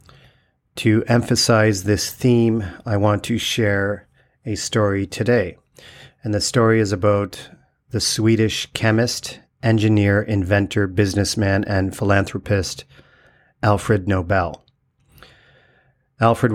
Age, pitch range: 40-59, 100-115 Hz